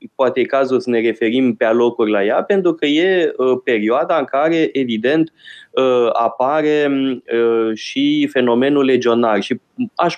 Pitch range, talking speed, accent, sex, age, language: 115-165 Hz, 135 wpm, native, male, 20-39, Romanian